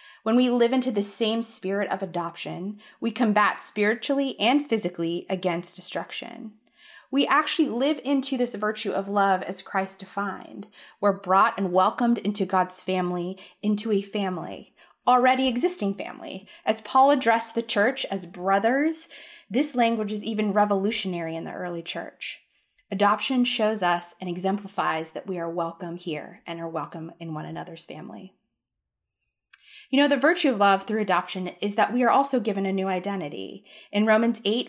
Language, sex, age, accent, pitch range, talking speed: English, female, 20-39, American, 185-230 Hz, 160 wpm